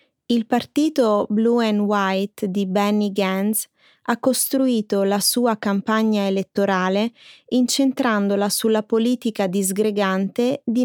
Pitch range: 195-235 Hz